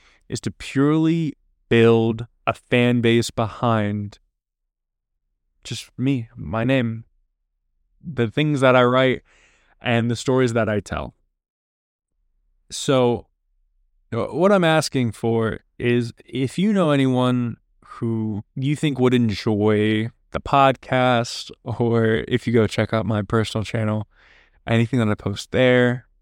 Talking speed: 125 wpm